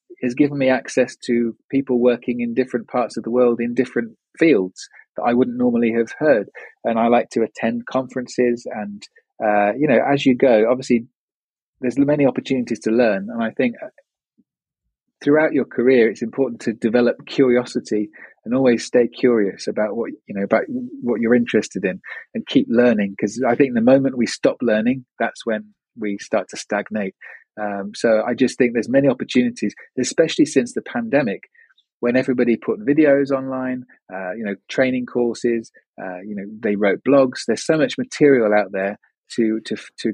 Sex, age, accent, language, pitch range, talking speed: male, 30-49, British, English, 110-130 Hz, 180 wpm